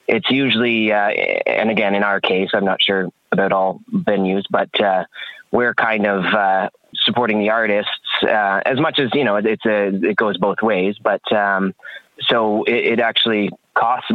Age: 20-39